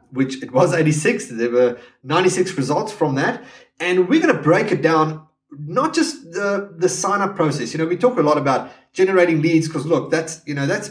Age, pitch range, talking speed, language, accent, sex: 30-49, 140-175 Hz, 210 wpm, English, Australian, male